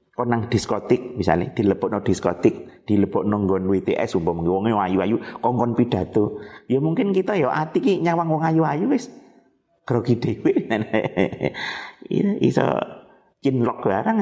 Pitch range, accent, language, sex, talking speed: 105-140 Hz, native, Indonesian, male, 150 wpm